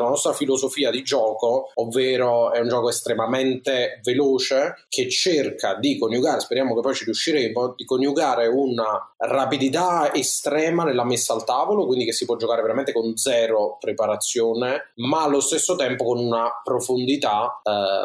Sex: male